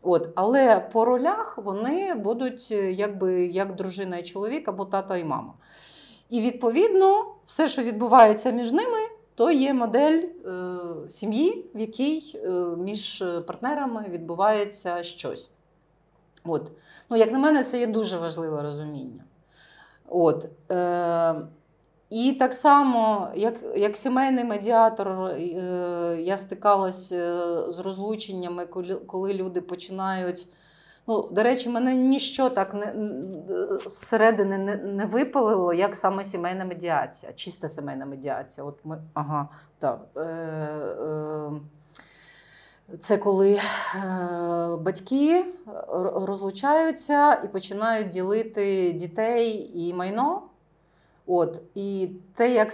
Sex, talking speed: female, 110 wpm